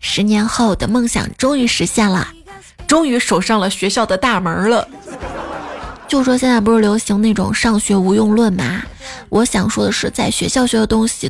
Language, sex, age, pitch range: Chinese, female, 20-39, 200-245 Hz